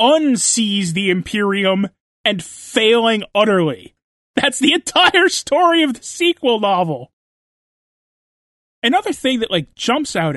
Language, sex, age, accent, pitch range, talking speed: English, male, 30-49, American, 170-215 Hz, 115 wpm